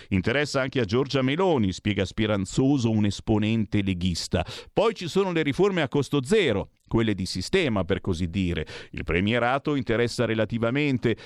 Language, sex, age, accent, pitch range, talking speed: Italian, male, 50-69, native, 100-145 Hz, 150 wpm